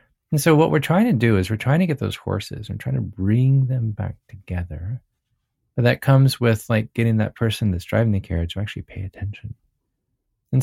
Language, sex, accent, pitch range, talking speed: English, male, American, 95-125 Hz, 215 wpm